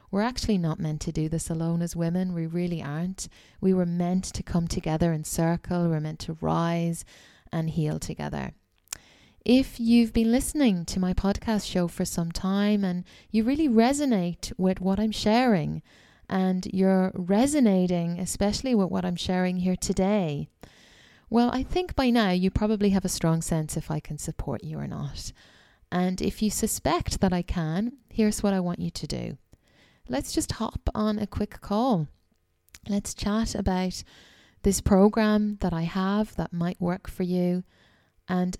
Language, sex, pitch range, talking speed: English, female, 170-215 Hz, 170 wpm